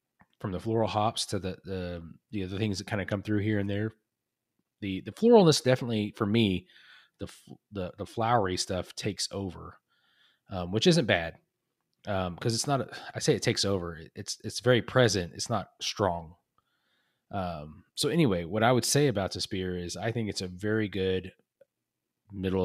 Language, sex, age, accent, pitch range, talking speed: English, male, 30-49, American, 90-105 Hz, 190 wpm